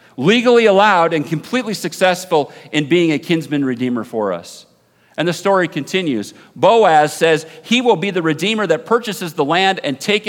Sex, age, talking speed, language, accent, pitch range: male, 40-59, 170 wpm, English, American, 135-175 Hz